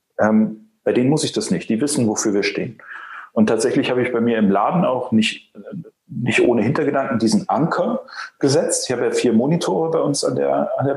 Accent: German